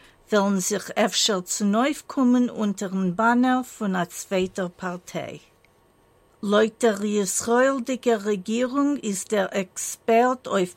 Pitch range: 195-235 Hz